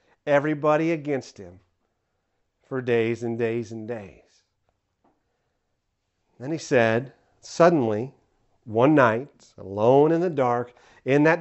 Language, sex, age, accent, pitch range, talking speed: English, male, 40-59, American, 120-155 Hz, 110 wpm